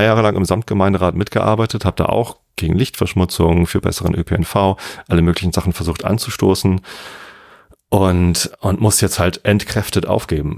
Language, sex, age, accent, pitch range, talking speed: German, male, 40-59, German, 85-100 Hz, 140 wpm